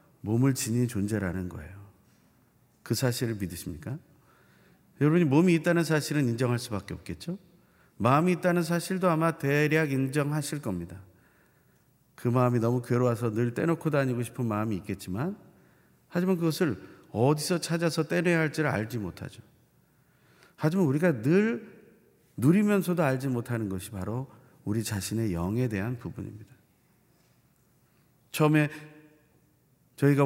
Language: Korean